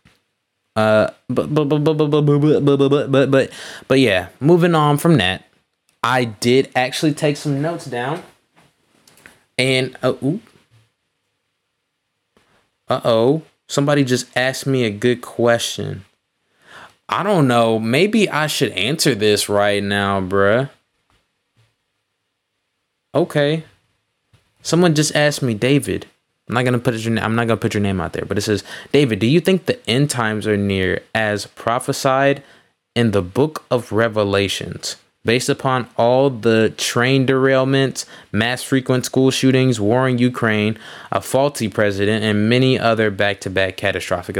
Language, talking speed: English, 135 wpm